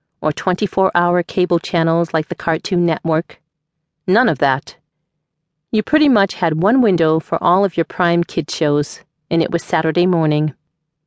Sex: female